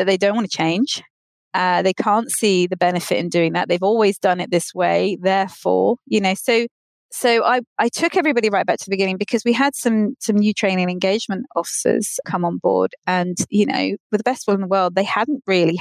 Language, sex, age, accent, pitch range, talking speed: English, female, 30-49, British, 185-235 Hz, 225 wpm